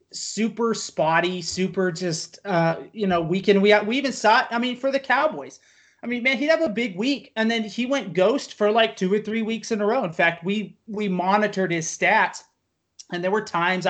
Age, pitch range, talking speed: 30-49, 155-220 Hz, 220 wpm